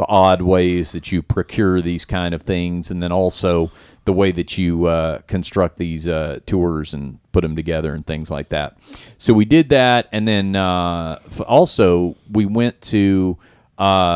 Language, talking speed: English, 175 wpm